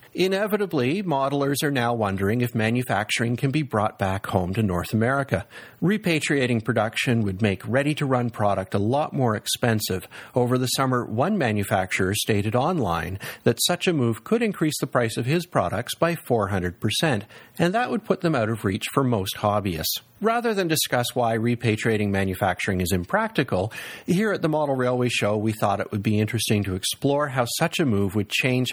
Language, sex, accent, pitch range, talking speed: English, male, American, 105-155 Hz, 175 wpm